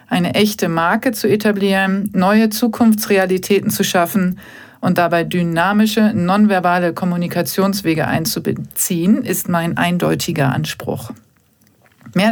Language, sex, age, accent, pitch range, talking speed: German, female, 40-59, German, 170-210 Hz, 95 wpm